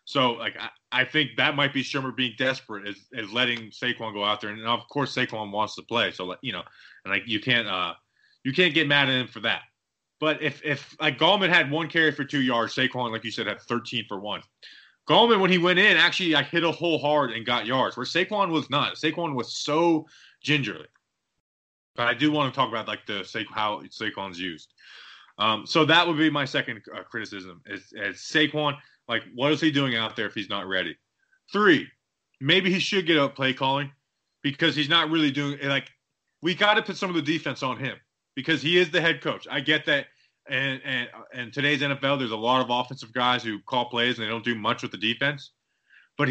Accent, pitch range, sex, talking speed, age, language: American, 120-155 Hz, male, 230 wpm, 20-39, English